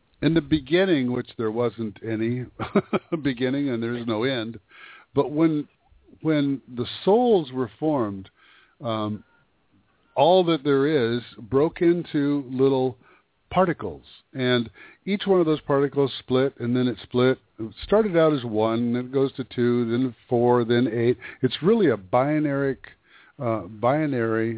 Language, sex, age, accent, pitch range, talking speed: English, male, 50-69, American, 120-150 Hz, 145 wpm